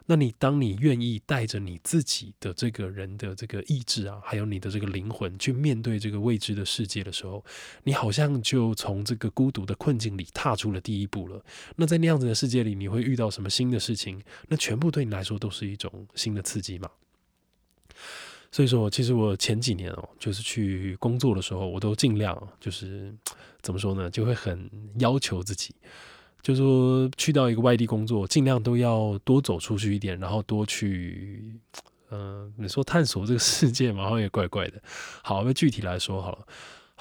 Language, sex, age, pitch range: Chinese, male, 20-39, 95-120 Hz